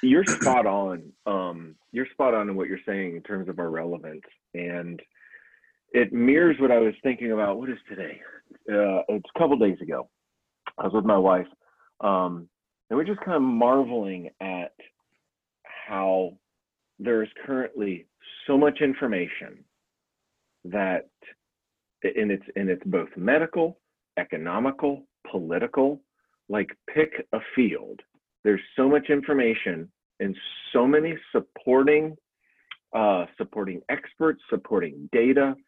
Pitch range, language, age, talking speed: 100-140 Hz, English, 40-59, 135 wpm